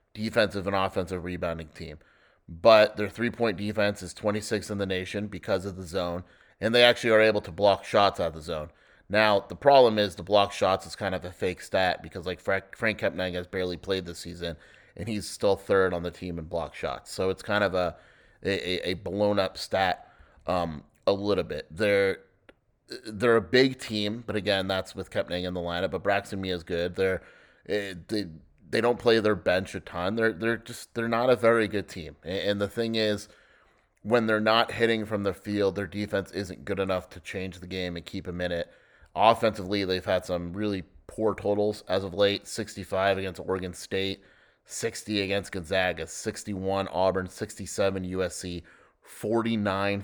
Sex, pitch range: male, 95-105 Hz